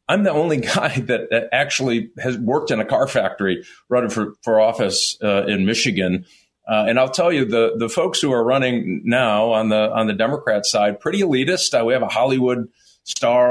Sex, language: male, English